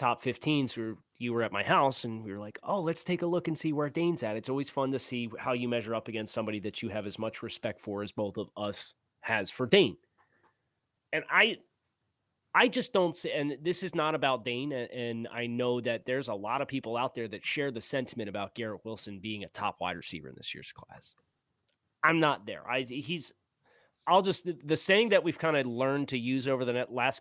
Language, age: English, 30-49